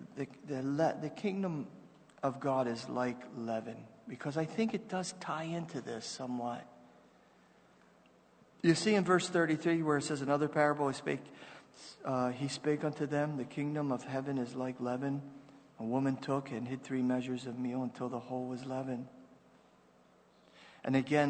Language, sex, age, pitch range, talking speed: English, male, 40-59, 130-155 Hz, 165 wpm